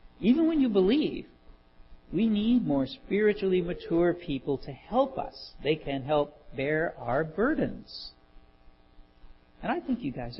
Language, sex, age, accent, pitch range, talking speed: English, male, 50-69, American, 130-200 Hz, 140 wpm